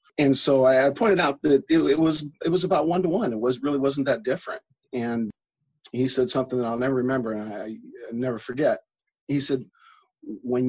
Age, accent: 50-69, American